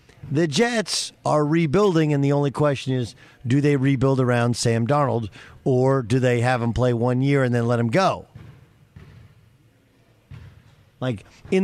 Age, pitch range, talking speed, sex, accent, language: 50-69, 120-155 Hz, 155 wpm, male, American, English